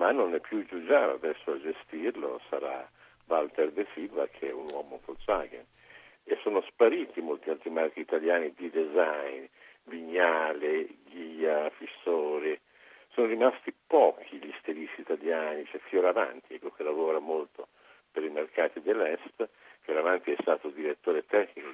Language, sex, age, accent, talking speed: Italian, male, 60-79, native, 140 wpm